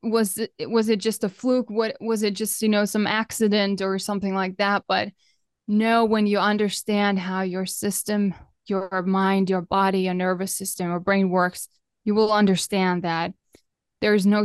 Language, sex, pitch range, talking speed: English, female, 190-220 Hz, 185 wpm